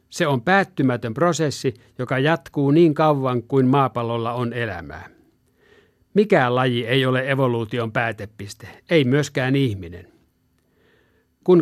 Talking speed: 115 wpm